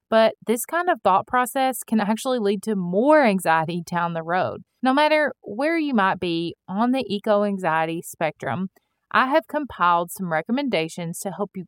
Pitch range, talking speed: 180-230 Hz, 170 wpm